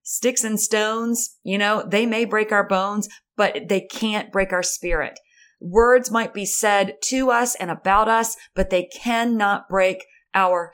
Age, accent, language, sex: 30-49, American, English, female